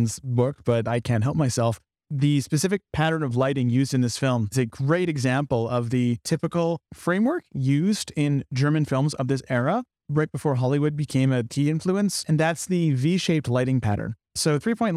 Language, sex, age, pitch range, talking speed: English, male, 30-49, 135-165 Hz, 175 wpm